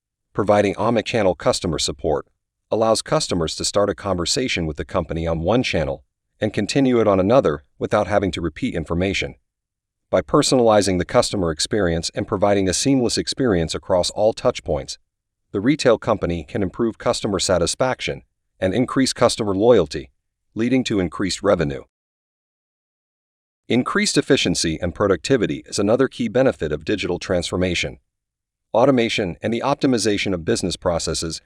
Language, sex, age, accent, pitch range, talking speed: English, male, 40-59, American, 90-115 Hz, 135 wpm